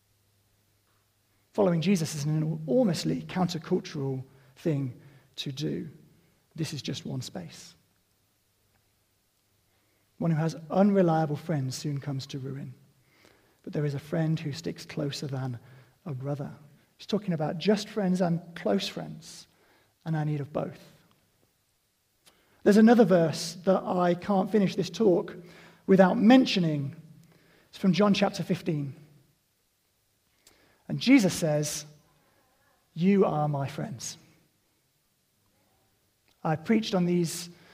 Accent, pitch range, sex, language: British, 140-185 Hz, male, English